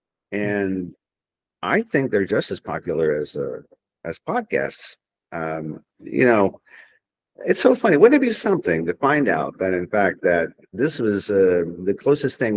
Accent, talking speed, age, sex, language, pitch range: American, 160 wpm, 50-69, male, English, 85-105 Hz